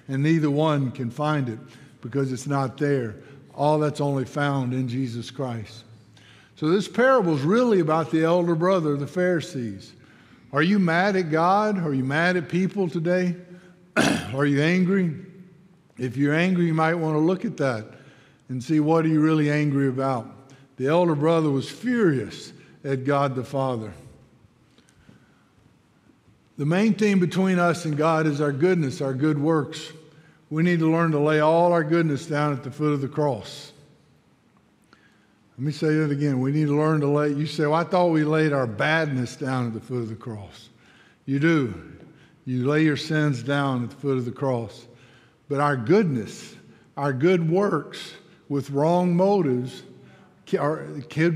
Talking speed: 170 wpm